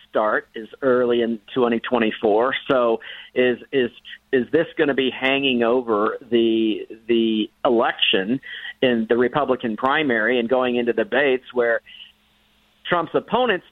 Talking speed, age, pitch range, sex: 125 wpm, 50-69, 120-145 Hz, male